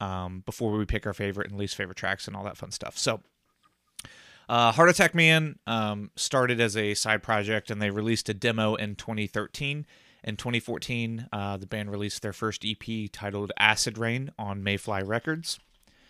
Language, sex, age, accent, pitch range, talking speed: English, male, 30-49, American, 105-120 Hz, 180 wpm